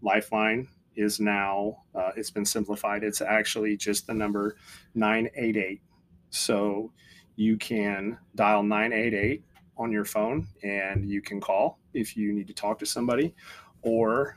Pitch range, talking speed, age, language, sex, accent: 105-115 Hz, 140 wpm, 30-49, English, male, American